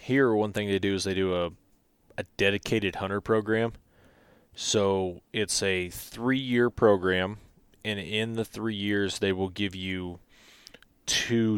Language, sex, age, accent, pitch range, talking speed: English, male, 20-39, American, 95-110 Hz, 145 wpm